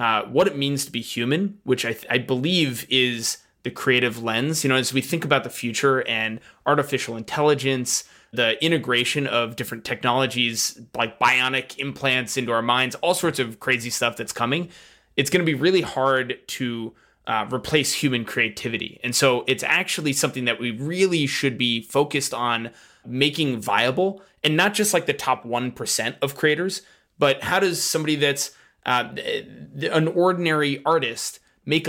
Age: 20-39